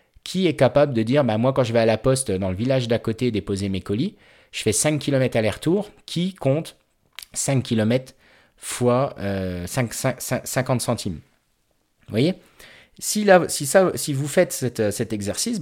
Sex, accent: male, French